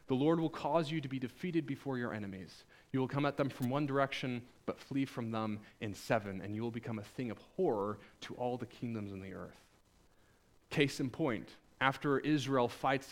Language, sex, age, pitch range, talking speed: English, male, 30-49, 120-160 Hz, 210 wpm